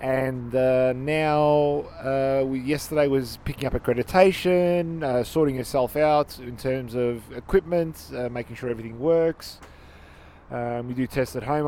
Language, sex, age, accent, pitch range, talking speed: English, male, 20-39, Australian, 120-145 Hz, 145 wpm